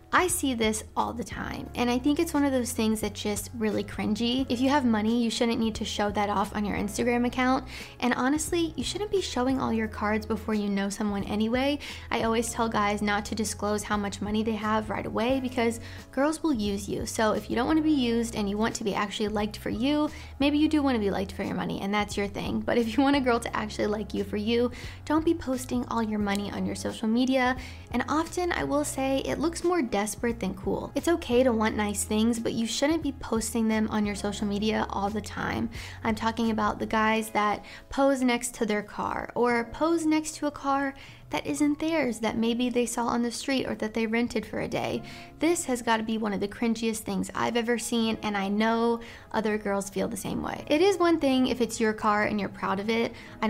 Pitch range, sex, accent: 210-260 Hz, female, American